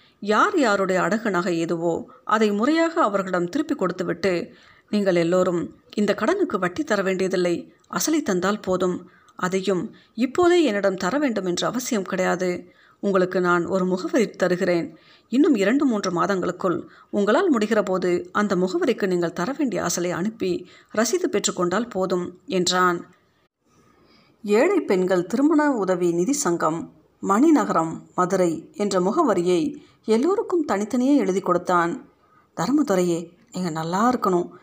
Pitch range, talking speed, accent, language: 180-250 Hz, 120 wpm, native, Tamil